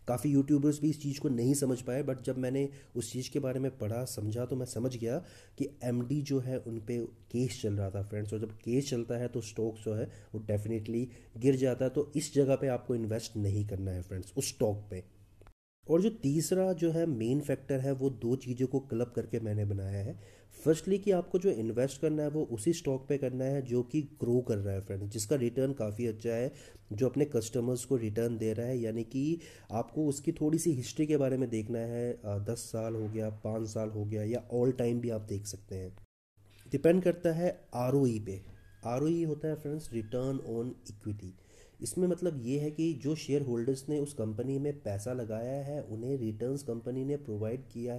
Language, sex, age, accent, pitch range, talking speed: Hindi, male, 30-49, native, 110-140 Hz, 215 wpm